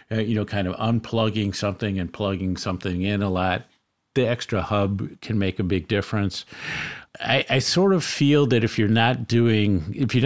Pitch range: 95-115 Hz